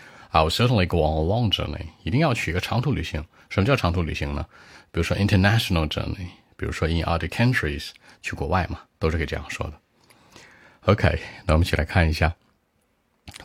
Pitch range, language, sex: 75-95 Hz, Chinese, male